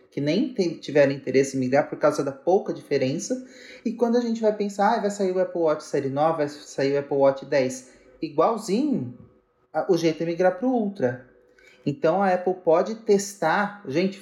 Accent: Brazilian